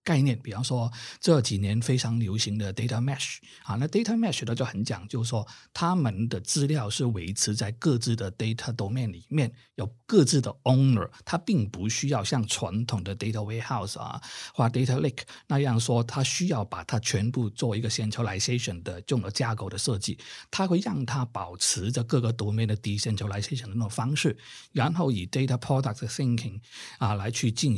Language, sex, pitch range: Chinese, male, 110-135 Hz